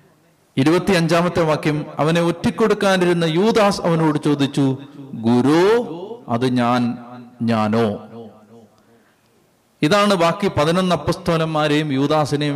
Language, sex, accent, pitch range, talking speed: Malayalam, male, native, 135-175 Hz, 70 wpm